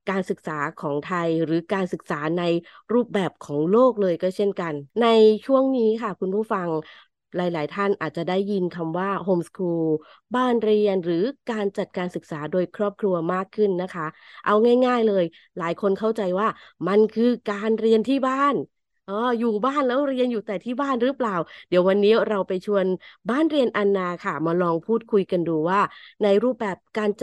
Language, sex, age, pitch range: Thai, female, 20-39, 175-220 Hz